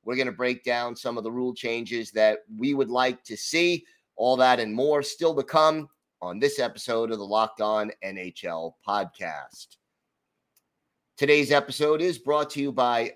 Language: English